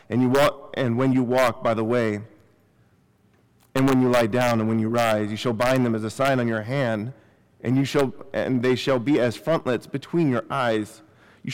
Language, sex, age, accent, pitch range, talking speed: English, male, 40-59, American, 115-140 Hz, 220 wpm